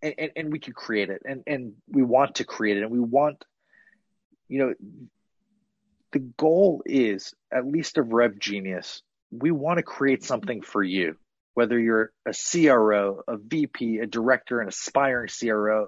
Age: 30-49